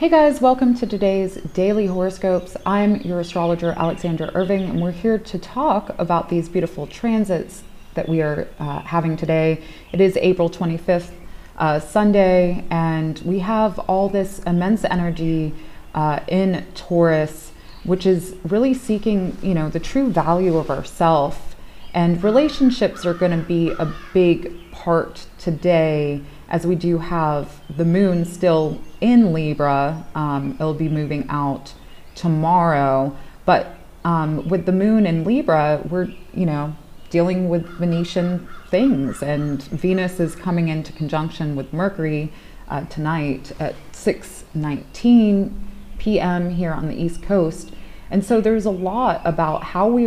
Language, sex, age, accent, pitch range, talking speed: English, female, 20-39, American, 155-190 Hz, 145 wpm